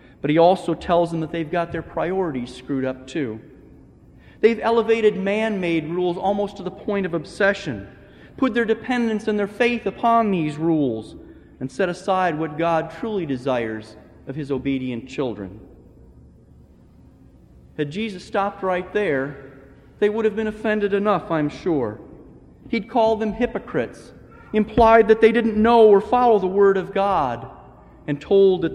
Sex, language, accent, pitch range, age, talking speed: male, English, American, 135-200 Hz, 40-59, 155 wpm